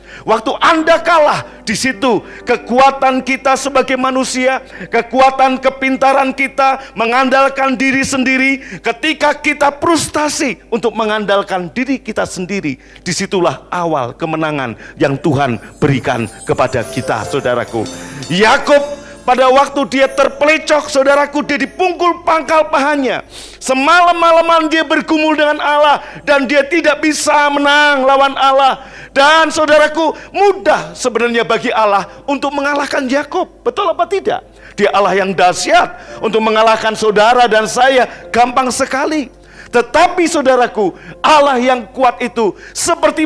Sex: male